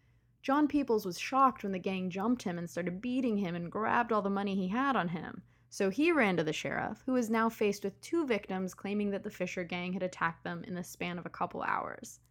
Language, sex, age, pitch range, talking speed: English, female, 20-39, 180-235 Hz, 245 wpm